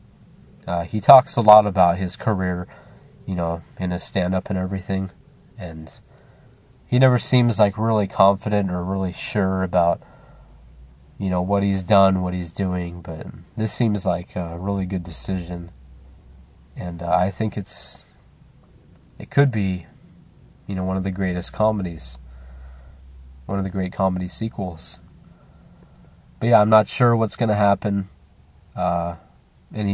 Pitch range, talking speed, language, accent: 85-105 Hz, 150 wpm, English, American